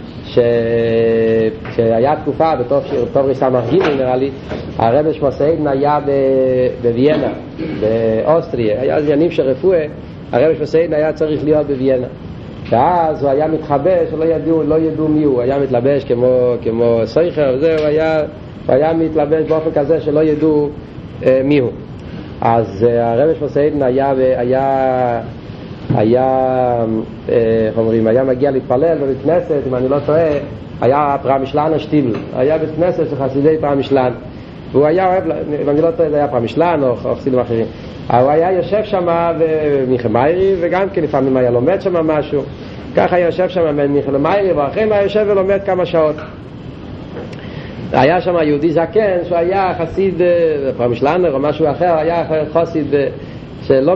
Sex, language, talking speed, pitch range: male, Hebrew, 140 wpm, 125-160 Hz